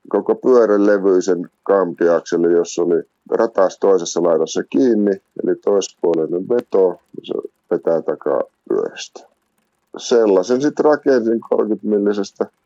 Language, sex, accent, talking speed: Finnish, male, native, 105 wpm